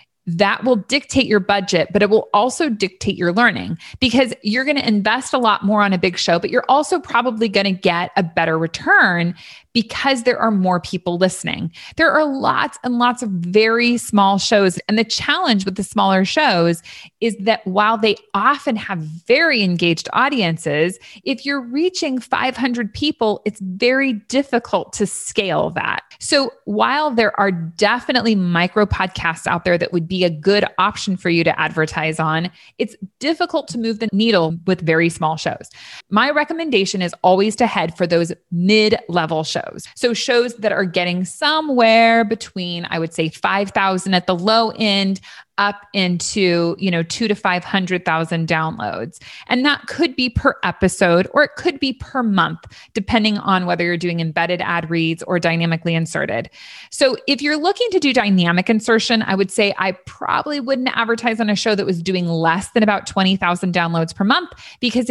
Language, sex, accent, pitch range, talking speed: English, female, American, 180-240 Hz, 180 wpm